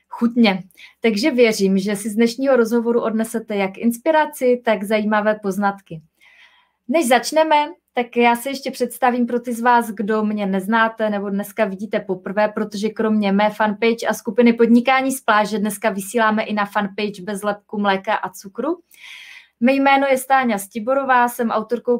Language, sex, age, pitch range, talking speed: Czech, female, 20-39, 205-250 Hz, 160 wpm